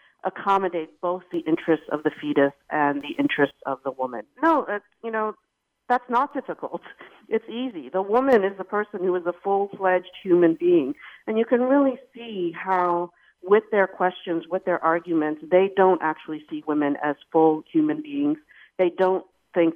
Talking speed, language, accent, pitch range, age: 170 wpm, English, American, 155-195 Hz, 50-69